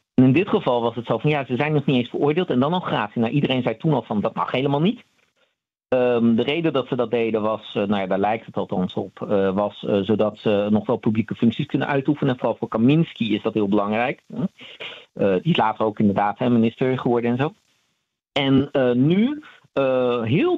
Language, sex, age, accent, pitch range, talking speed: Dutch, male, 50-69, Dutch, 115-150 Hz, 225 wpm